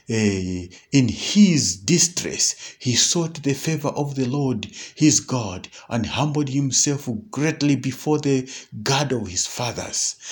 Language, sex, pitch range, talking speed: English, male, 115-155 Hz, 135 wpm